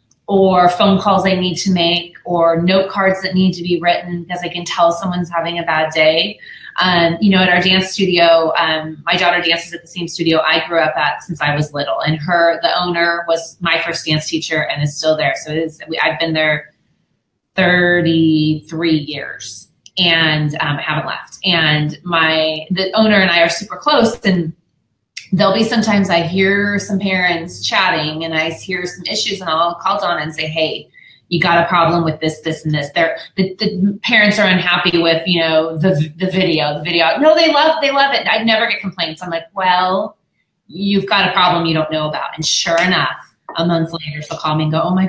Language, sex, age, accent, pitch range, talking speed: English, female, 30-49, American, 160-195 Hz, 215 wpm